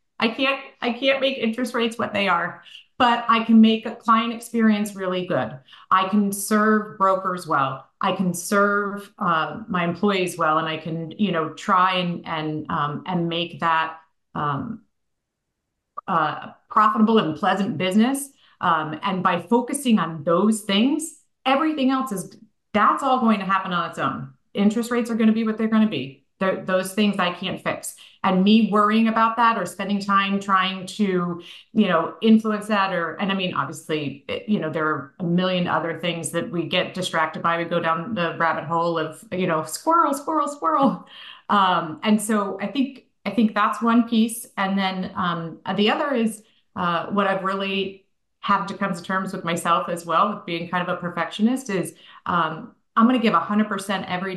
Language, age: English, 40-59